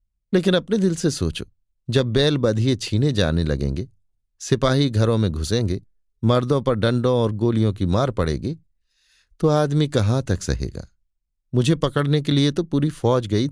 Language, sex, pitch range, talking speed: Hindi, male, 90-135 Hz, 160 wpm